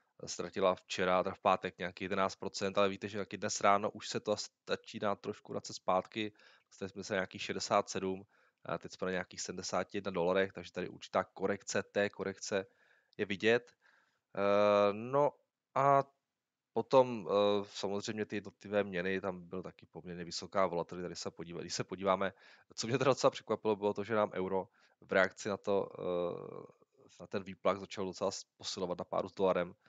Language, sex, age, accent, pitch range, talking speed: Czech, male, 20-39, native, 90-105 Hz, 170 wpm